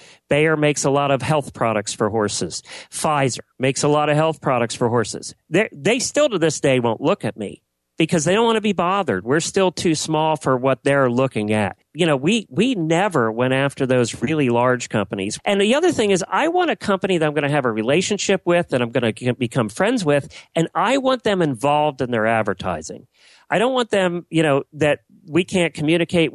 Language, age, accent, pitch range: English, 40-59, American, 125-170 Hz